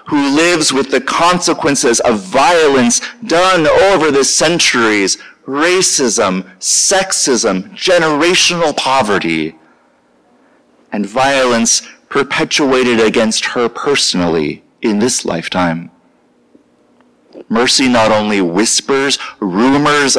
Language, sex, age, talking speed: English, male, 40-59, 85 wpm